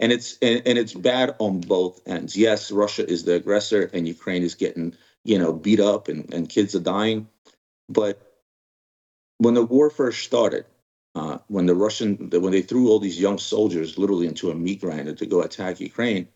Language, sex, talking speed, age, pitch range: English, male, 195 wpm, 30-49, 90-110 Hz